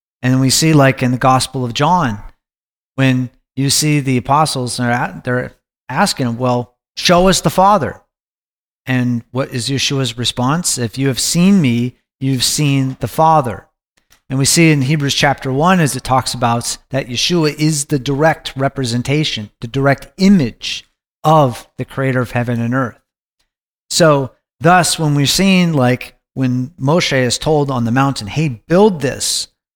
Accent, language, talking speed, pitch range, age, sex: American, English, 155 wpm, 125-150 Hz, 40-59, male